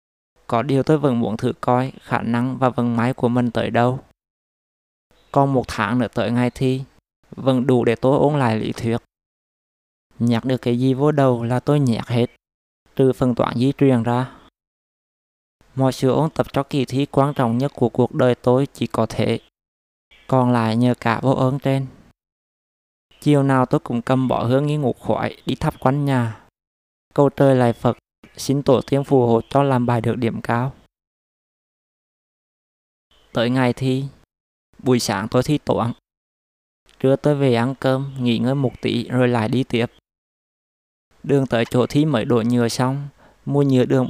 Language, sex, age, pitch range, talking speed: Vietnamese, male, 20-39, 115-135 Hz, 180 wpm